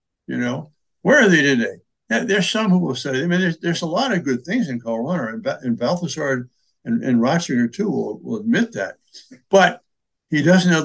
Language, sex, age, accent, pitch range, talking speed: English, male, 60-79, American, 130-195 Hz, 225 wpm